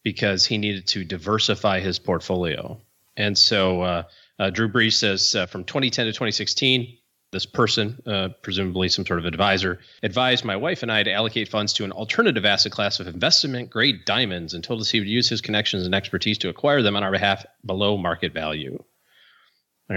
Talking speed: 190 wpm